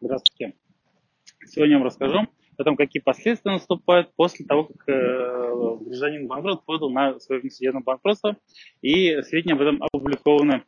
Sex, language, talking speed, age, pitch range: male, Russian, 140 wpm, 20-39, 130-165 Hz